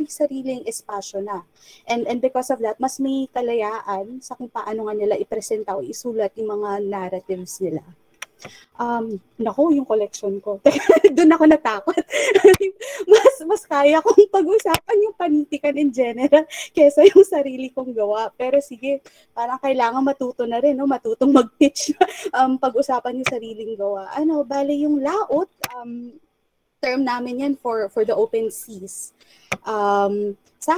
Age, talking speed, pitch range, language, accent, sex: 20-39, 140 wpm, 215-295 Hz, Filipino, native, female